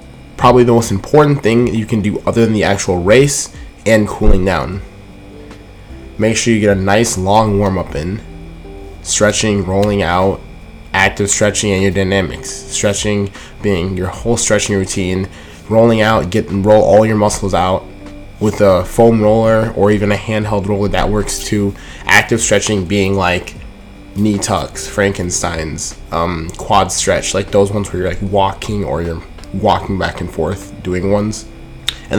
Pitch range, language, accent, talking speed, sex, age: 95-110 Hz, English, American, 160 wpm, male, 20-39